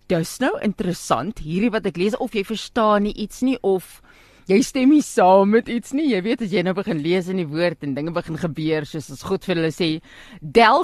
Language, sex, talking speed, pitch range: English, female, 240 wpm, 180-260 Hz